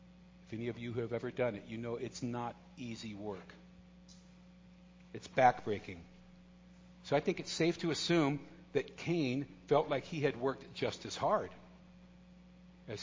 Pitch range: 135-180 Hz